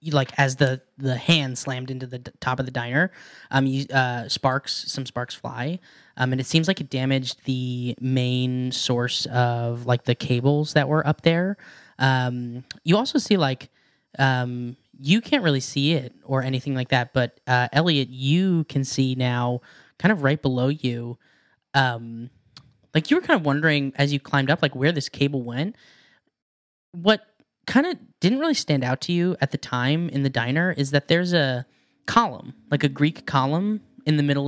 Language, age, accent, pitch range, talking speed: English, 10-29, American, 125-155 Hz, 190 wpm